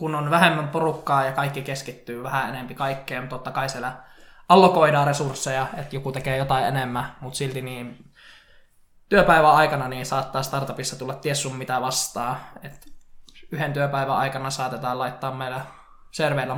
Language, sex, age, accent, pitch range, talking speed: Finnish, male, 20-39, native, 130-150 Hz, 145 wpm